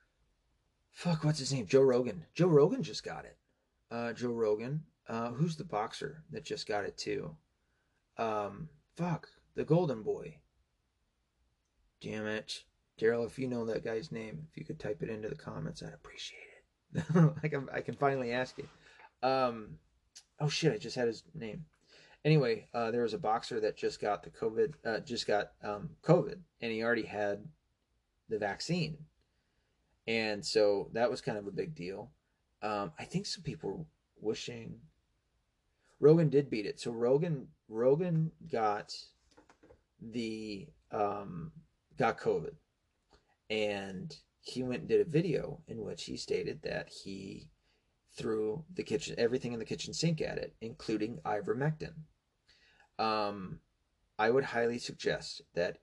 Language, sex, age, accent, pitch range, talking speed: English, male, 30-49, American, 110-160 Hz, 155 wpm